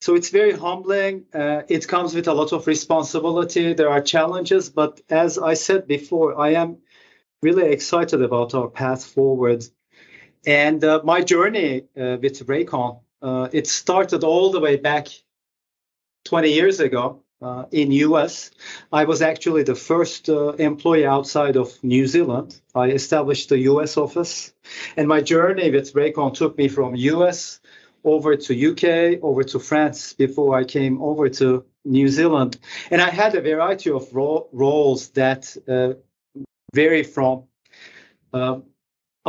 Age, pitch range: 40-59, 135-160 Hz